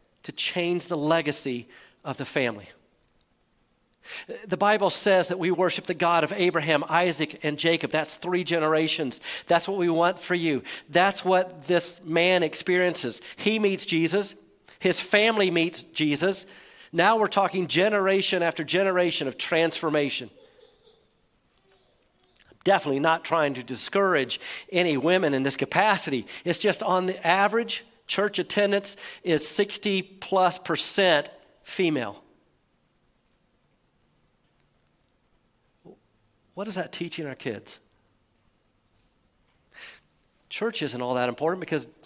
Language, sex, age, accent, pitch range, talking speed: English, male, 50-69, American, 145-190 Hz, 115 wpm